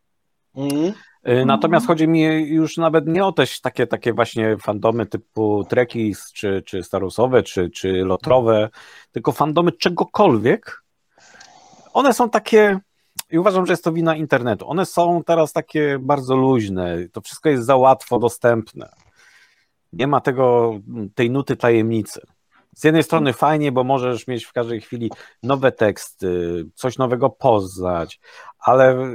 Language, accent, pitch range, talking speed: Polish, native, 110-160 Hz, 140 wpm